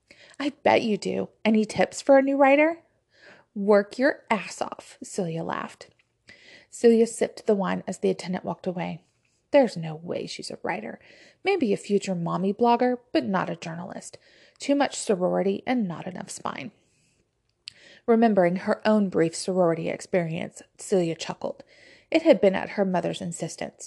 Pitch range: 185-240 Hz